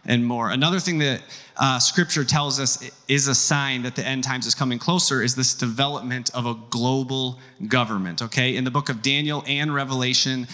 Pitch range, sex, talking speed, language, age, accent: 120-140 Hz, male, 195 wpm, English, 30-49, American